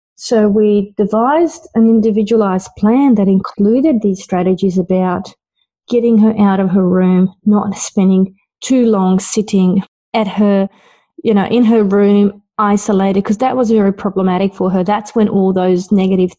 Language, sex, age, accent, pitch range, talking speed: English, female, 30-49, Australian, 180-215 Hz, 155 wpm